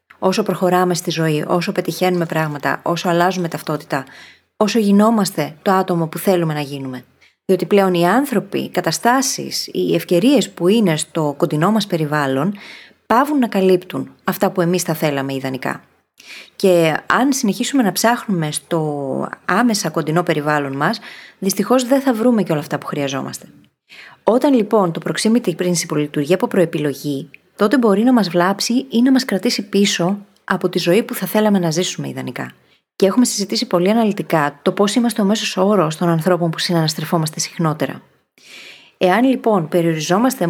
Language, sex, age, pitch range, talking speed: Greek, female, 20-39, 165-220 Hz, 160 wpm